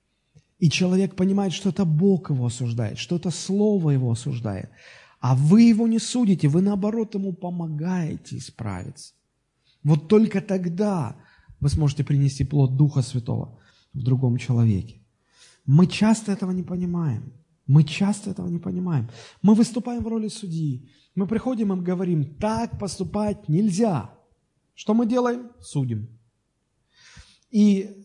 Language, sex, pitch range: Russian, male, 140-215 Hz